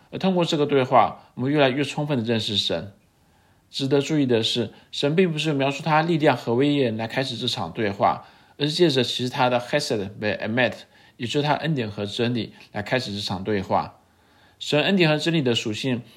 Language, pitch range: Chinese, 110-140 Hz